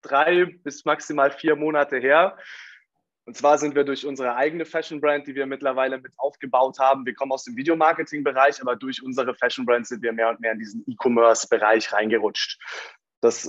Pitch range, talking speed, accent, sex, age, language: 120-145 Hz, 175 wpm, German, male, 20-39, German